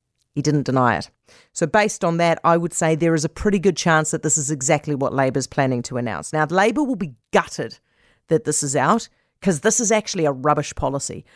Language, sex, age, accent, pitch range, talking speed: English, female, 40-59, Australian, 150-200 Hz, 220 wpm